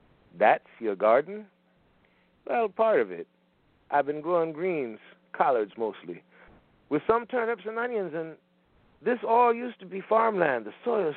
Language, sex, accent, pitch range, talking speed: English, male, American, 110-165 Hz, 145 wpm